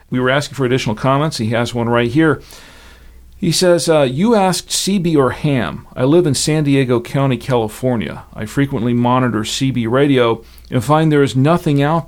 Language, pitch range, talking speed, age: English, 115-150 Hz, 185 wpm, 50-69